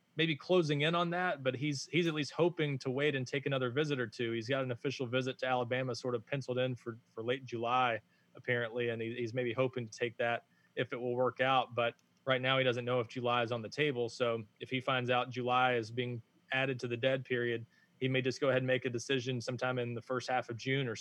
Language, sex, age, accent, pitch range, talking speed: English, male, 20-39, American, 120-130 Hz, 255 wpm